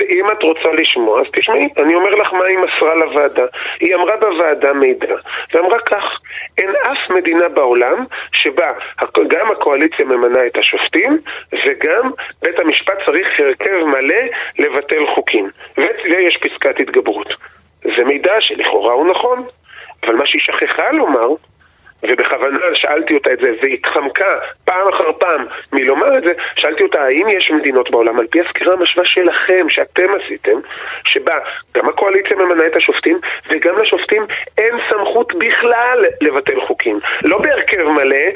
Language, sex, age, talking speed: Hebrew, male, 30-49, 145 wpm